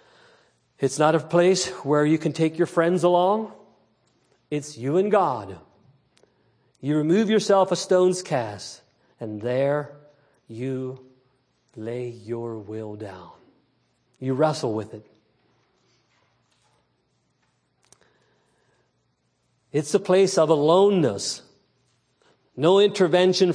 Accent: American